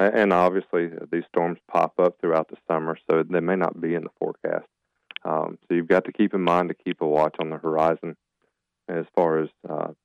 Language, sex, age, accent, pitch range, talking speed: English, male, 40-59, American, 80-95 Hz, 215 wpm